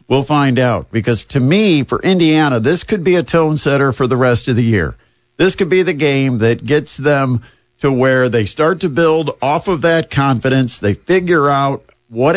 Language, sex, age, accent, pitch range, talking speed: English, male, 50-69, American, 120-160 Hz, 205 wpm